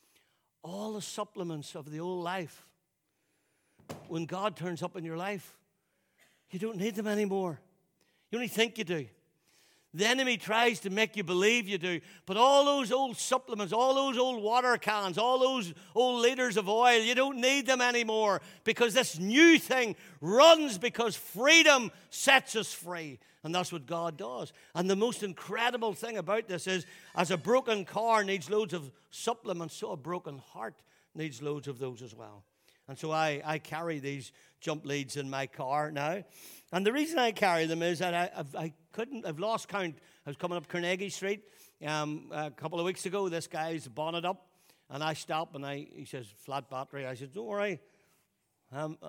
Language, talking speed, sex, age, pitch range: English, 185 wpm, male, 60-79, 145-215 Hz